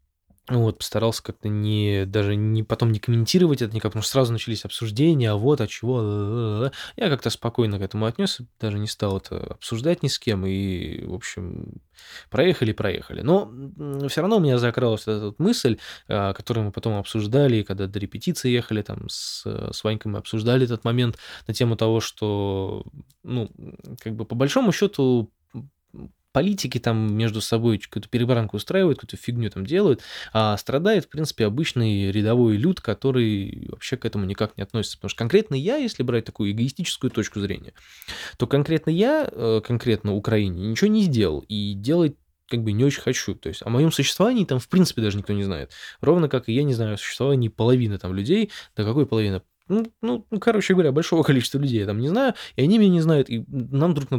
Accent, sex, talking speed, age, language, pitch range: native, male, 190 wpm, 20-39, Russian, 105-140 Hz